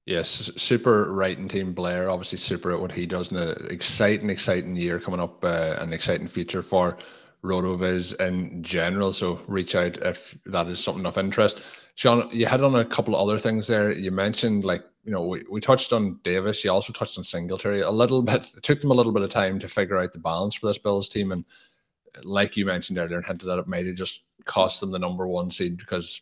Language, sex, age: English, male, 30-49